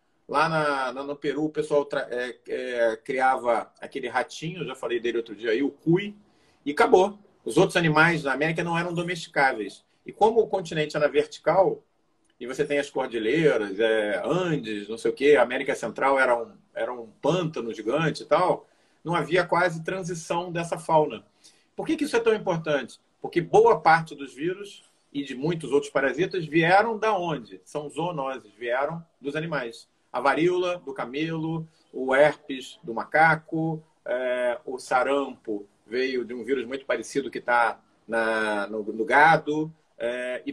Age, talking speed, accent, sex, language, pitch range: 40-59, 165 wpm, Brazilian, male, Portuguese, 140-180 Hz